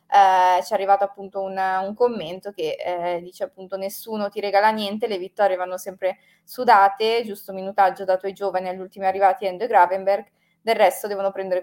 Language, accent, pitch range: Italian, native, 185-200 Hz